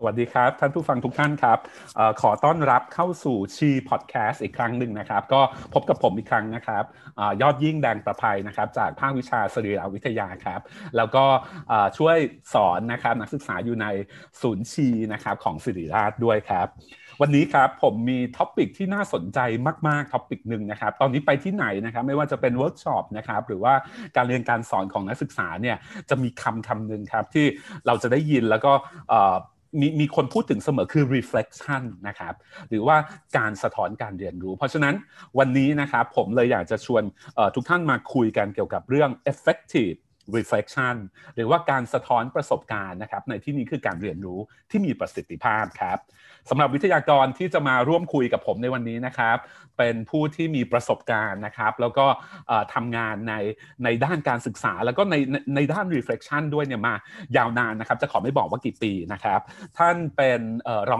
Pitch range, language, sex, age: 115-150 Hz, Thai, male, 30-49